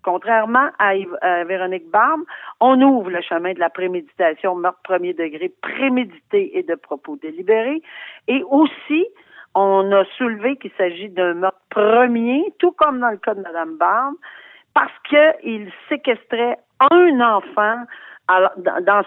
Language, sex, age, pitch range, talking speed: French, female, 50-69, 180-245 Hz, 135 wpm